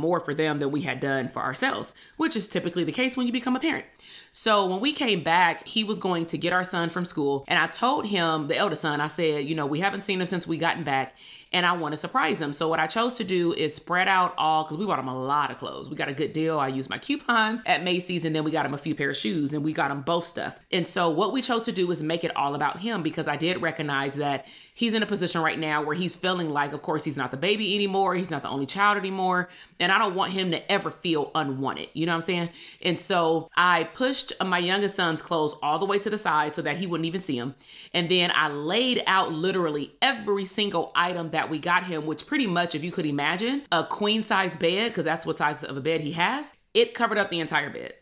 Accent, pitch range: American, 155-200 Hz